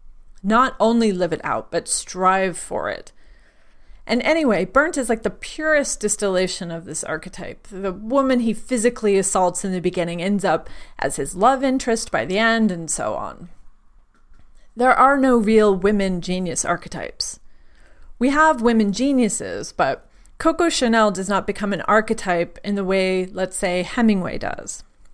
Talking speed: 160 wpm